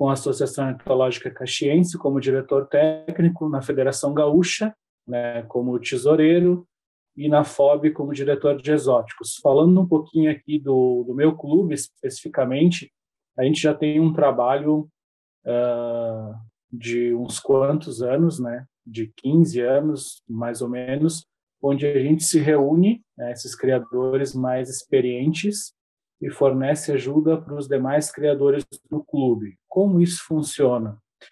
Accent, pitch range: Brazilian, 125-150 Hz